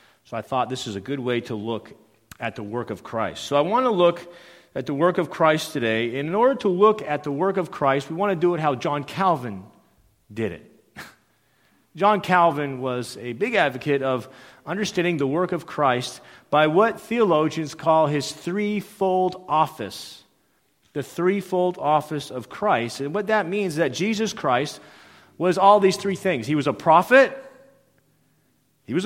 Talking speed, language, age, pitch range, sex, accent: 185 wpm, English, 40-59, 135-205 Hz, male, American